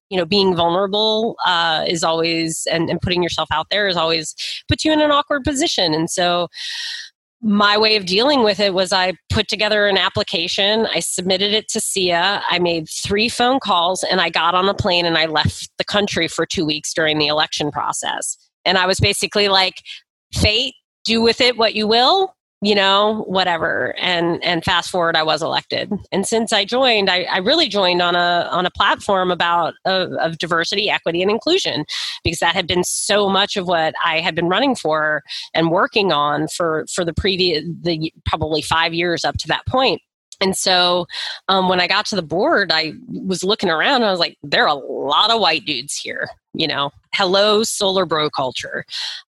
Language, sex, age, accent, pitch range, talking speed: English, female, 30-49, American, 165-210 Hz, 200 wpm